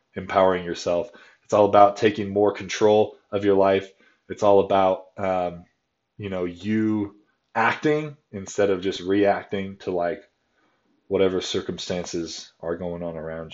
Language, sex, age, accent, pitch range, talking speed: English, male, 20-39, American, 95-110 Hz, 135 wpm